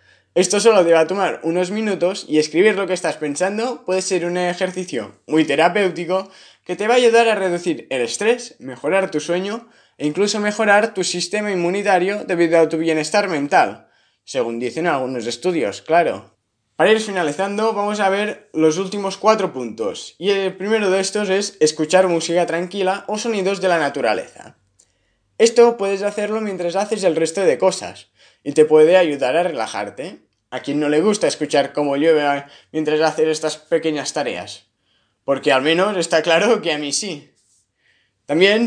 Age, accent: 20-39, Spanish